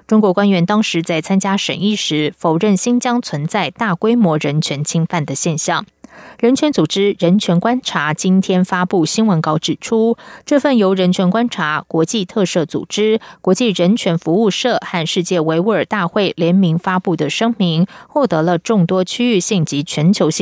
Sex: female